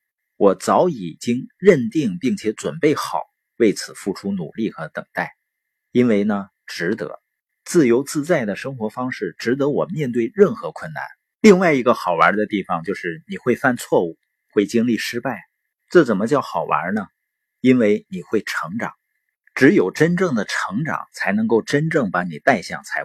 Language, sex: Chinese, male